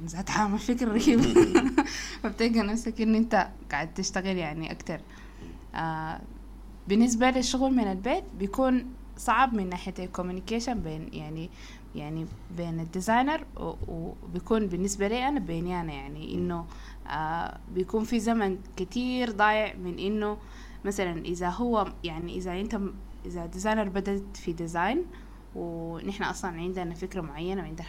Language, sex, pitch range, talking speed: Arabic, female, 170-220 Hz, 125 wpm